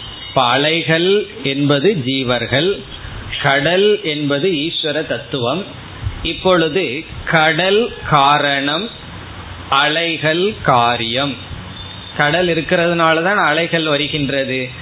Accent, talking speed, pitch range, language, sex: native, 50 wpm, 130-175 Hz, Tamil, male